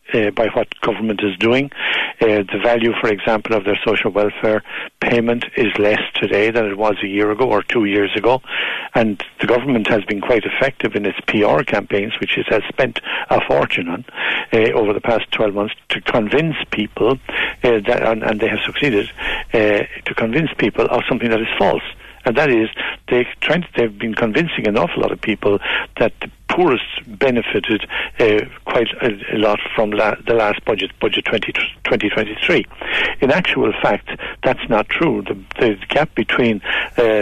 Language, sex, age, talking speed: English, male, 60-79, 180 wpm